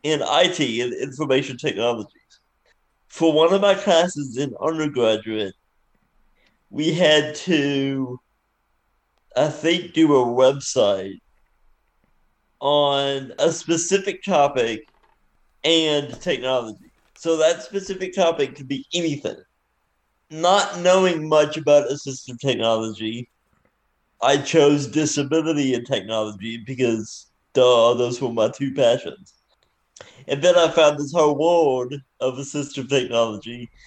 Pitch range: 120-150 Hz